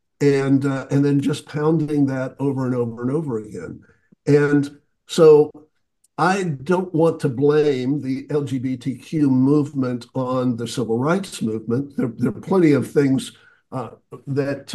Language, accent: English, American